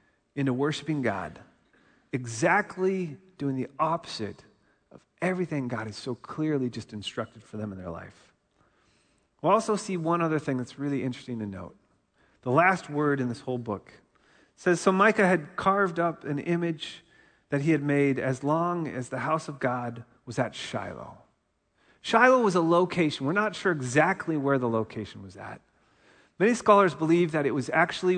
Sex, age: male, 40-59